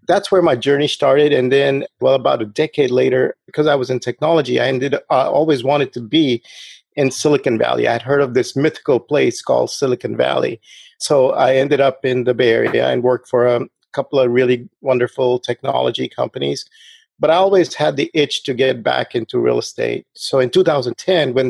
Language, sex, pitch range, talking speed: English, male, 125-145 Hz, 200 wpm